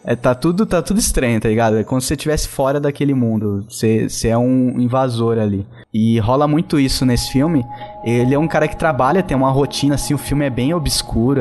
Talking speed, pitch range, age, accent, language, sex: 225 wpm, 120-155 Hz, 10-29, Brazilian, Portuguese, male